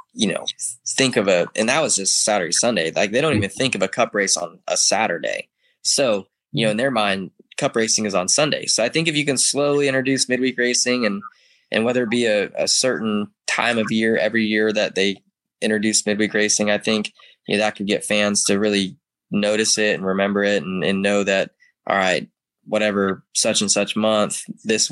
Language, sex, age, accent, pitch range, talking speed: English, male, 10-29, American, 100-125 Hz, 210 wpm